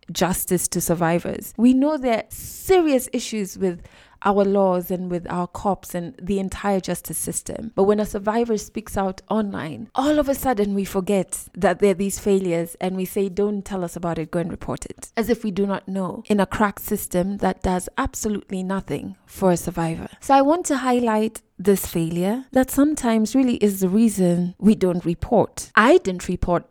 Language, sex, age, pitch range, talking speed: English, female, 20-39, 180-220 Hz, 195 wpm